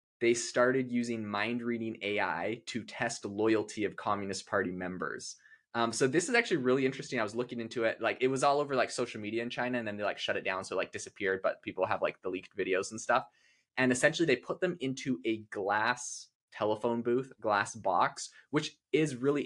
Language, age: English, 20-39